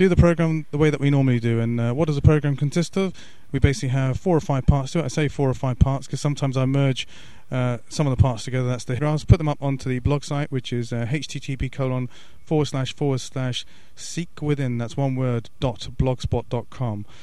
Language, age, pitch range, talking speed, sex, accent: English, 30-49, 125-155 Hz, 235 wpm, male, British